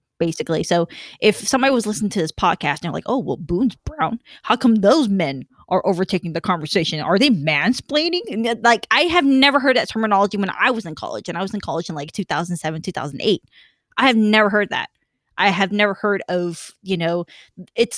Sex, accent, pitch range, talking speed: female, American, 180-225 Hz, 205 wpm